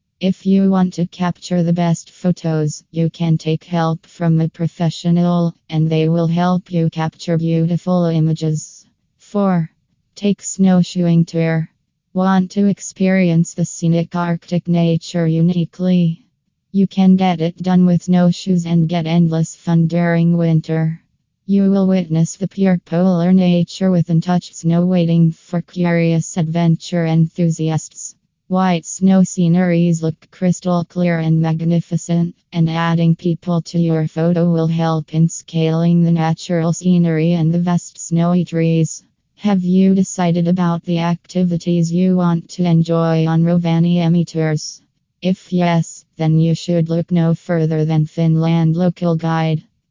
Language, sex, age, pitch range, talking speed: English, female, 20-39, 165-180 Hz, 135 wpm